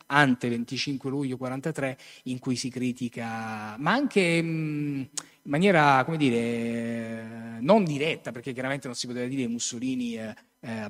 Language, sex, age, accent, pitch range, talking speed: Italian, male, 30-49, native, 125-155 Hz, 140 wpm